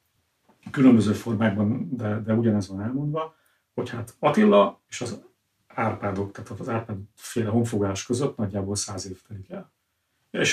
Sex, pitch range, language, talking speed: male, 100-125 Hz, Hungarian, 135 wpm